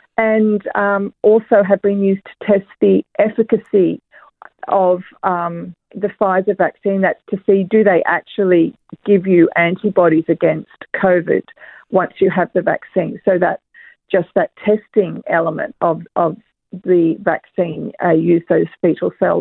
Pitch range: 195-235 Hz